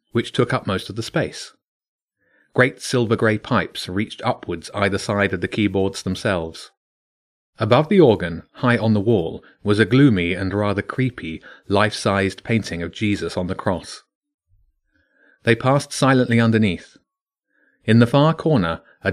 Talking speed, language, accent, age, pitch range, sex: 145 wpm, English, British, 30-49, 100-135 Hz, male